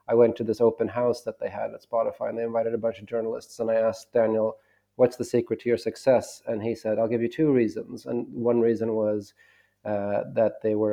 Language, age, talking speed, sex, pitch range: English, 30-49, 240 wpm, male, 110-120 Hz